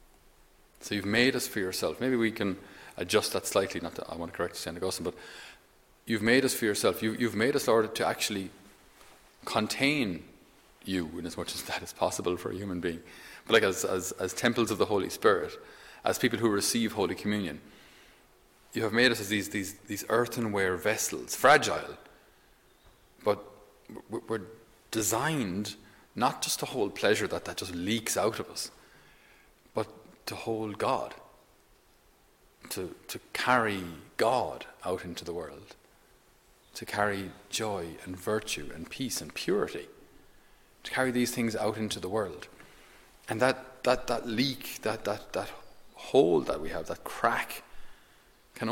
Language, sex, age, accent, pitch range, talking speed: English, male, 30-49, Irish, 95-120 Hz, 160 wpm